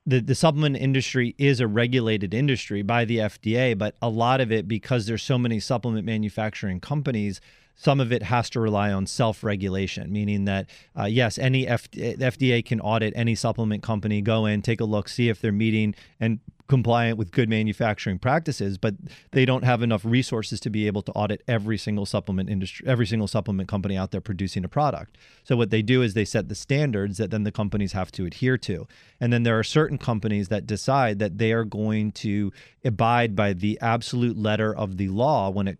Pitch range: 105-125 Hz